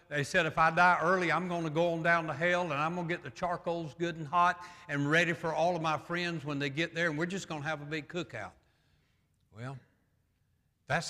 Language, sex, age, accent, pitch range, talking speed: English, male, 60-79, American, 140-185 Hz, 250 wpm